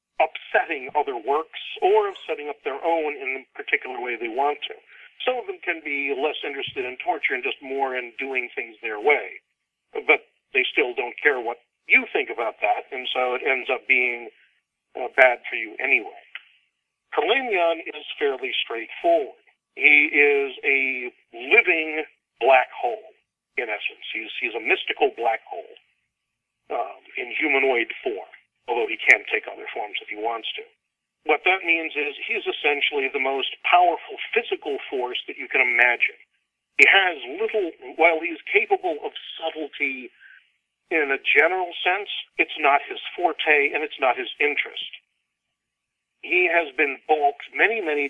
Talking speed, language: 160 wpm, English